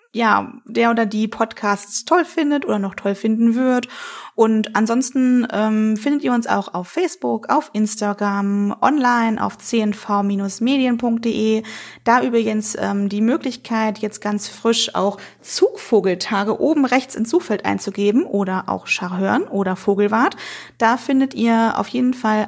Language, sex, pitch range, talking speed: German, female, 210-260 Hz, 140 wpm